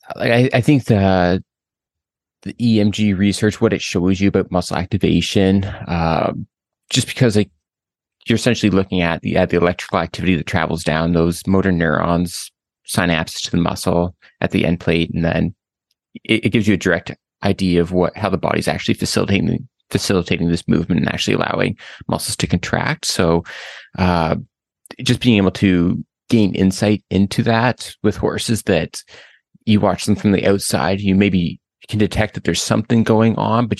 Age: 30-49